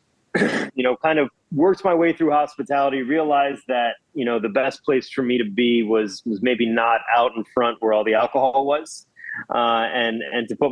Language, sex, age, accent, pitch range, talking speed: English, male, 30-49, American, 115-145 Hz, 205 wpm